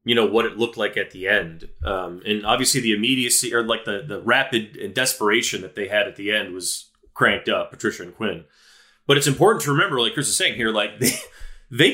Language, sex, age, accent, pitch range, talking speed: English, male, 20-39, American, 110-145 Hz, 230 wpm